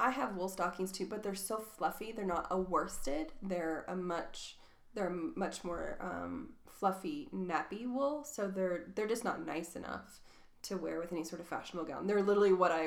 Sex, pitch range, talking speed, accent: female, 175-210 Hz, 195 wpm, American